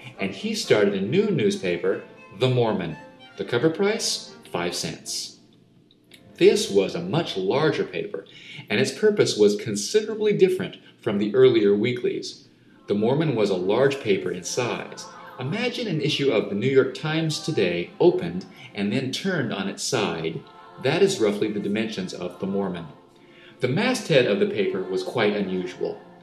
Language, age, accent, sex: English, 40-59, American, male